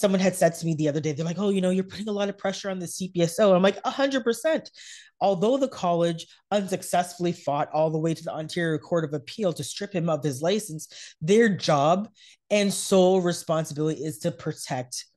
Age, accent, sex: 30-49, American, female